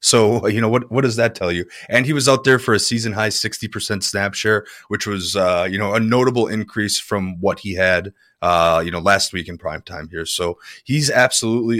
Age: 20-39